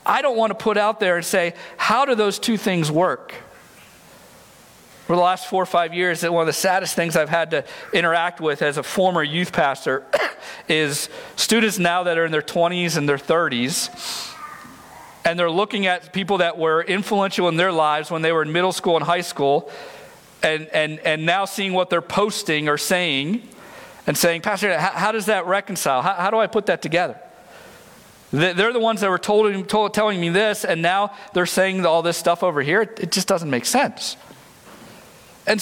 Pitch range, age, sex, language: 170-225 Hz, 50-69, male, English